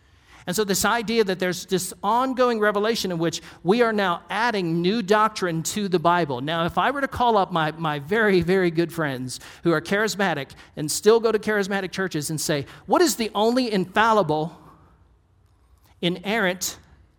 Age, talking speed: 50-69, 175 wpm